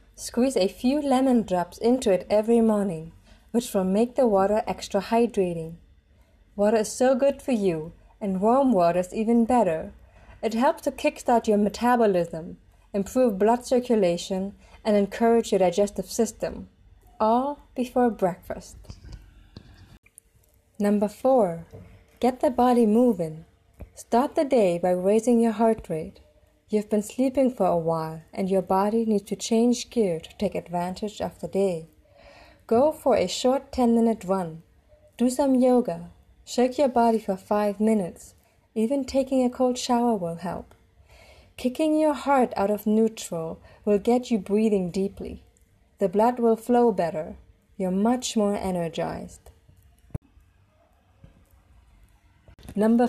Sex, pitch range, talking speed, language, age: female, 175-245 Hz, 140 wpm, English, 30-49